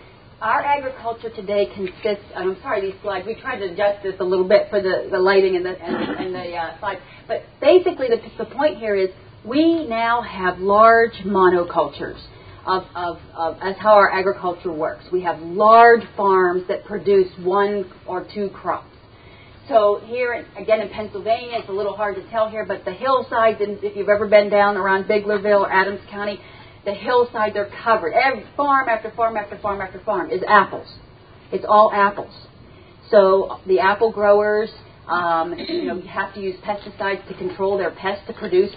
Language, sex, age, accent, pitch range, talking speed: English, female, 40-59, American, 185-225 Hz, 185 wpm